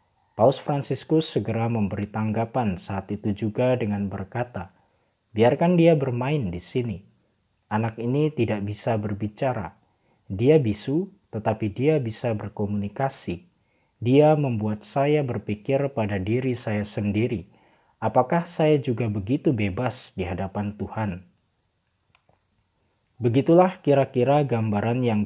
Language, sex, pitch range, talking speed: Indonesian, male, 105-135 Hz, 110 wpm